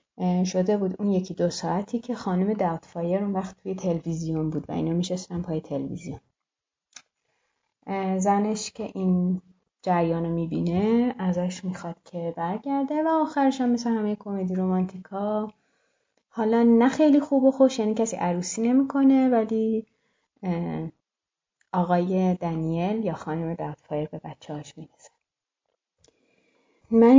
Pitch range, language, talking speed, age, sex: 165-205 Hz, Persian, 130 wpm, 30-49, female